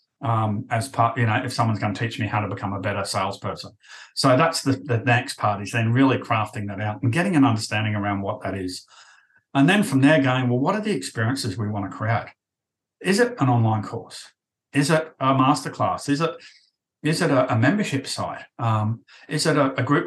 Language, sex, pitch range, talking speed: English, male, 110-135 Hz, 220 wpm